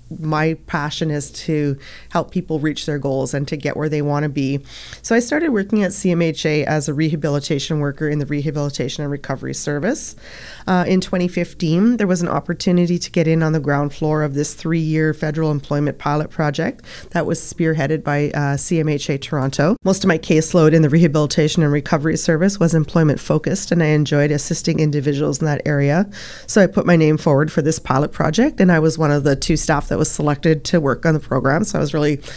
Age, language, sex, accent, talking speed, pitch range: 30-49, English, female, American, 205 wpm, 145-170 Hz